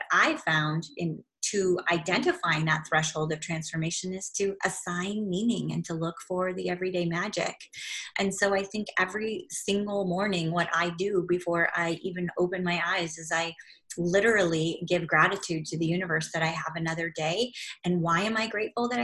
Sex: female